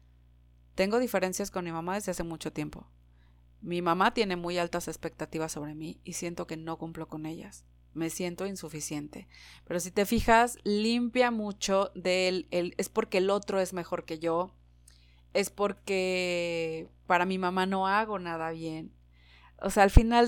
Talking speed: 165 wpm